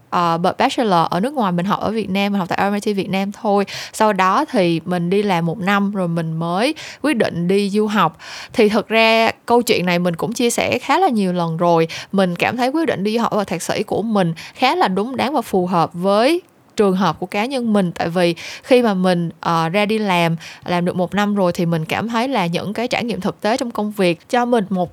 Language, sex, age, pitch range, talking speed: Vietnamese, female, 20-39, 175-235 Hz, 255 wpm